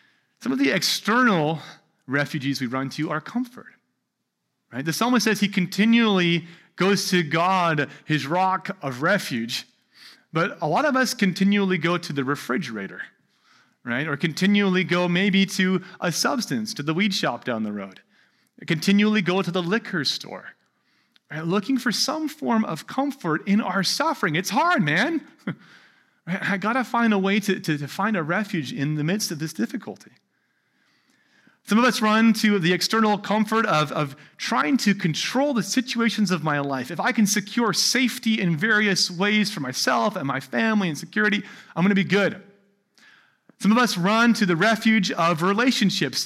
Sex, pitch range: male, 165-225 Hz